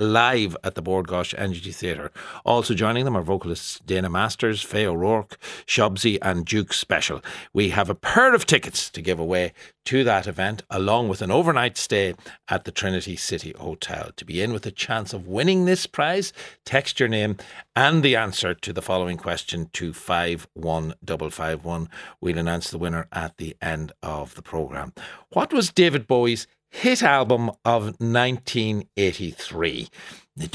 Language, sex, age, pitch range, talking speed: English, male, 60-79, 85-120 Hz, 160 wpm